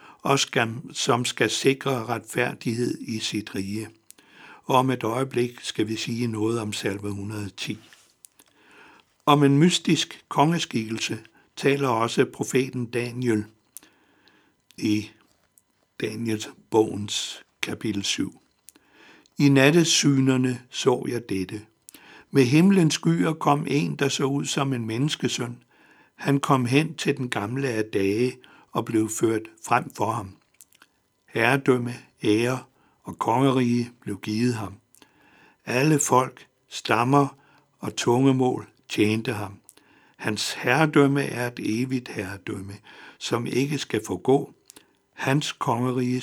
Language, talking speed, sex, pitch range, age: Danish, 115 wpm, male, 110-140 Hz, 60-79